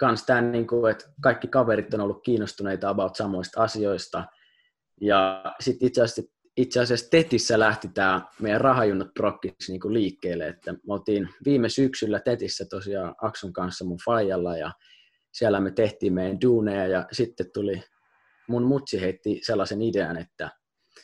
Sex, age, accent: male, 20-39, native